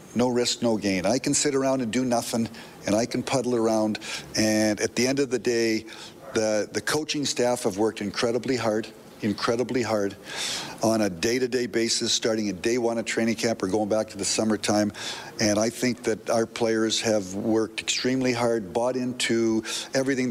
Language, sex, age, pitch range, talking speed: English, male, 50-69, 110-120 Hz, 185 wpm